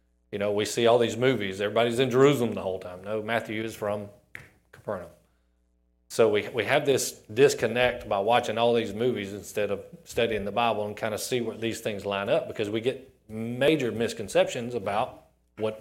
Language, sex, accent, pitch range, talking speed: English, male, American, 80-125 Hz, 190 wpm